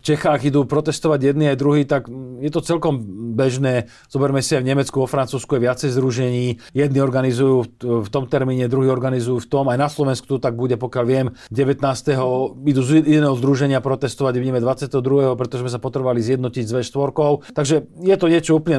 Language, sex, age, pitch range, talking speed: Slovak, male, 40-59, 125-145 Hz, 180 wpm